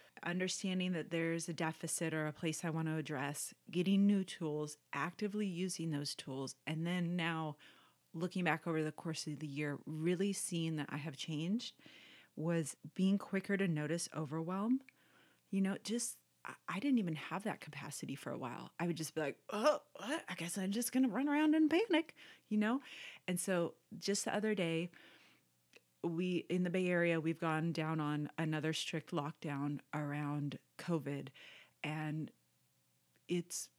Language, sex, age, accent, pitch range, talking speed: English, female, 30-49, American, 155-190 Hz, 165 wpm